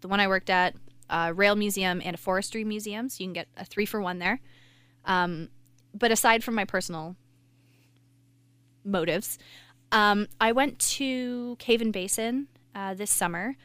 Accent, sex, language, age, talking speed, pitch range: American, female, English, 20-39, 165 wpm, 155-210 Hz